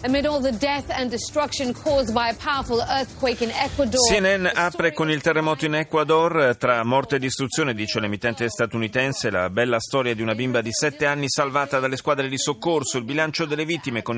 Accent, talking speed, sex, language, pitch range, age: native, 140 wpm, male, Italian, 110-145 Hz, 40-59